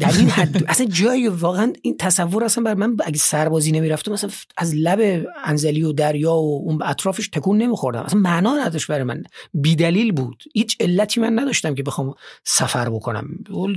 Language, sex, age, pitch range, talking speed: Persian, male, 40-59, 130-170 Hz, 165 wpm